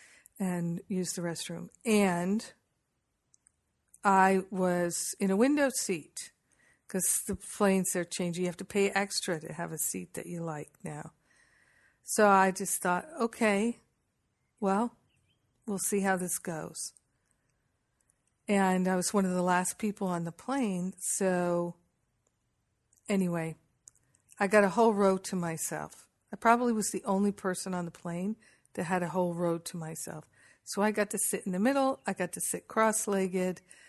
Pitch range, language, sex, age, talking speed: 175-210 Hz, English, female, 50-69, 160 wpm